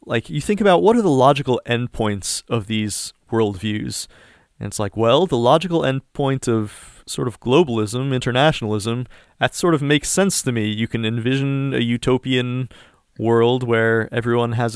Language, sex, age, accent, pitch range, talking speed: English, male, 30-49, American, 110-140 Hz, 165 wpm